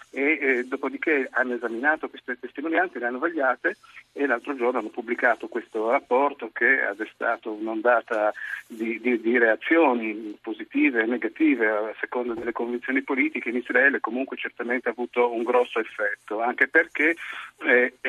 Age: 50-69